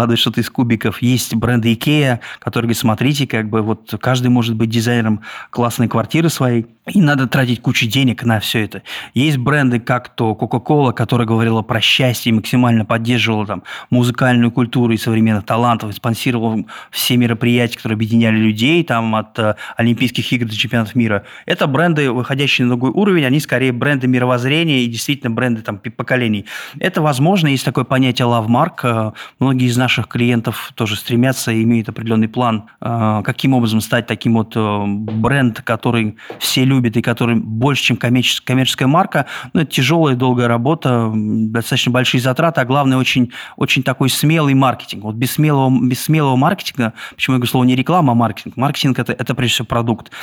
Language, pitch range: Russian, 115-130 Hz